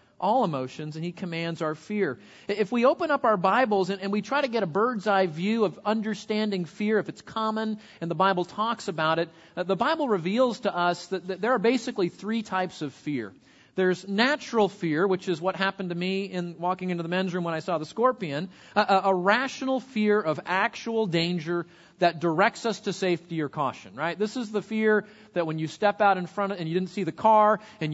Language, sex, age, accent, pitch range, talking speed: English, male, 40-59, American, 175-215 Hz, 225 wpm